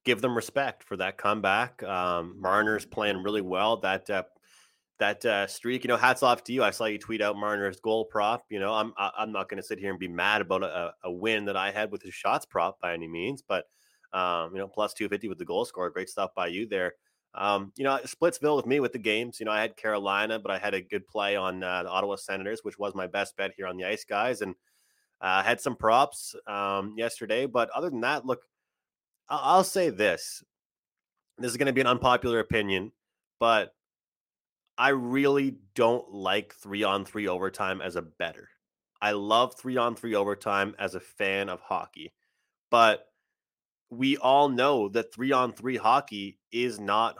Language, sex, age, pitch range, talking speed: English, male, 20-39, 100-120 Hz, 200 wpm